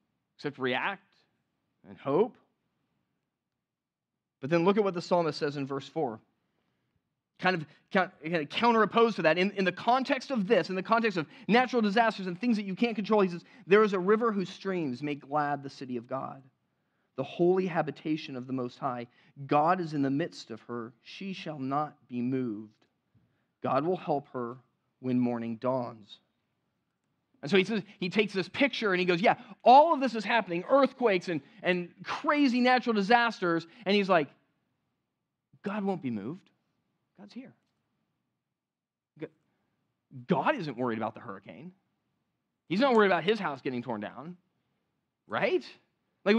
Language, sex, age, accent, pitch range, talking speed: English, male, 30-49, American, 135-220 Hz, 165 wpm